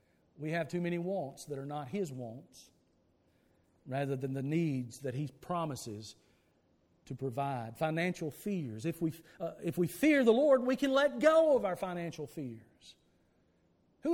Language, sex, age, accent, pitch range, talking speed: English, male, 50-69, American, 155-220 Hz, 155 wpm